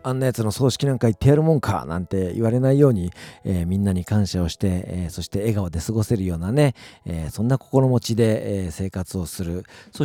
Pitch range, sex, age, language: 90-125 Hz, male, 50-69, Japanese